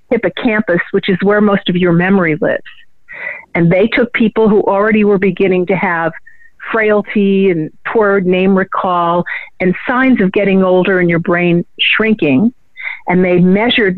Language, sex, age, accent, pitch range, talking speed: English, female, 50-69, American, 185-240 Hz, 155 wpm